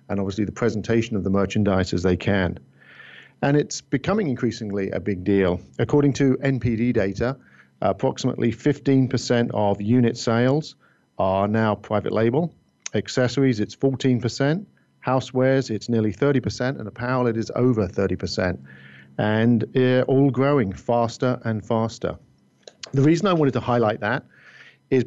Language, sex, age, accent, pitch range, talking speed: English, male, 50-69, British, 105-125 Hz, 140 wpm